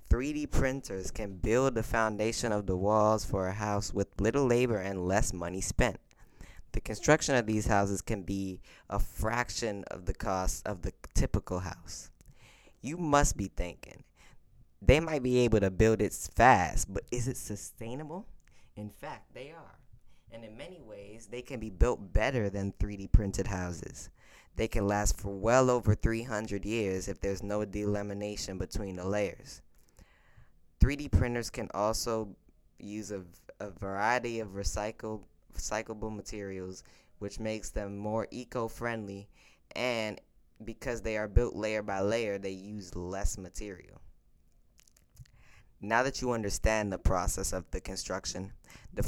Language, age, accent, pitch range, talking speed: English, 20-39, American, 95-115 Hz, 150 wpm